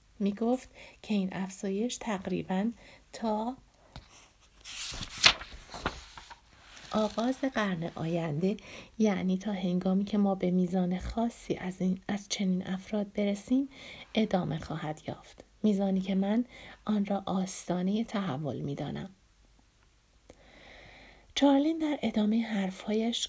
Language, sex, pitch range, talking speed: Persian, female, 185-220 Hz, 105 wpm